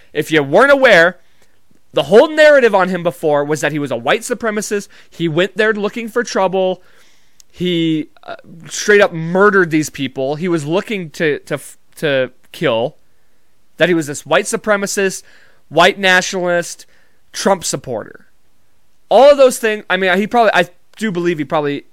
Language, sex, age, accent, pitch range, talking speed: English, male, 20-39, American, 155-225 Hz, 165 wpm